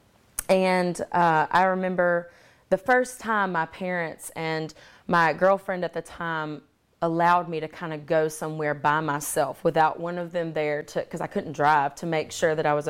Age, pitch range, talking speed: 30-49, 155-185 Hz, 180 wpm